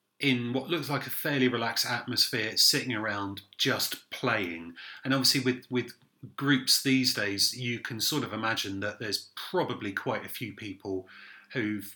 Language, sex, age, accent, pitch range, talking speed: English, male, 30-49, British, 105-140 Hz, 160 wpm